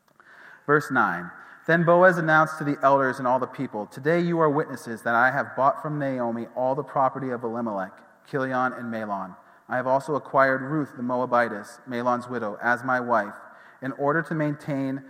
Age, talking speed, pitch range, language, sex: 30-49, 185 wpm, 120-155 Hz, English, male